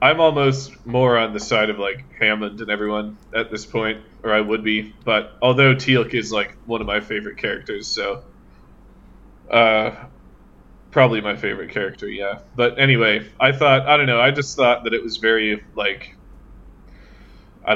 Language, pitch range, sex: English, 105-125 Hz, male